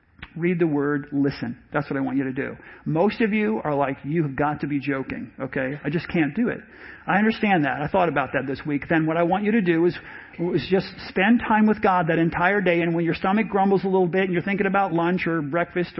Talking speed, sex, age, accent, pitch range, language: 255 wpm, male, 40-59, American, 160-210 Hz, English